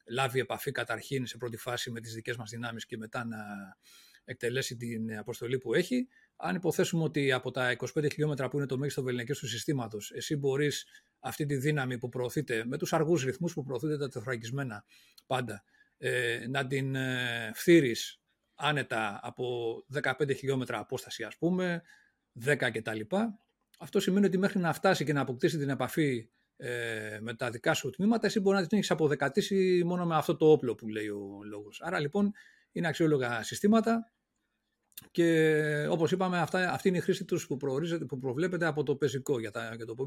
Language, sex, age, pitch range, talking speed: Greek, male, 40-59, 120-160 Hz, 175 wpm